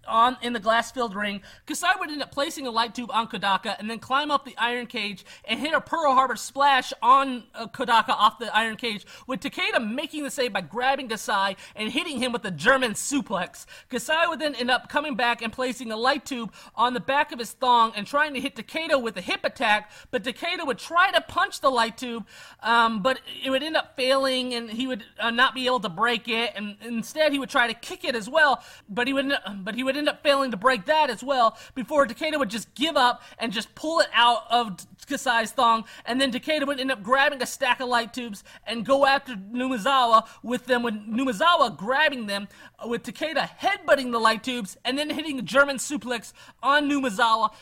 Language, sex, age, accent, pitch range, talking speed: English, male, 30-49, American, 225-275 Hz, 220 wpm